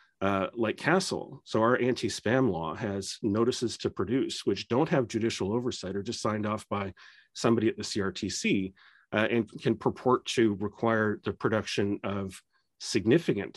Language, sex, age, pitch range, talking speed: English, male, 40-59, 105-125 Hz, 155 wpm